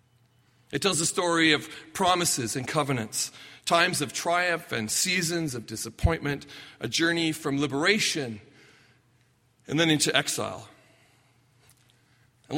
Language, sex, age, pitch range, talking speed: English, male, 40-59, 120-155 Hz, 115 wpm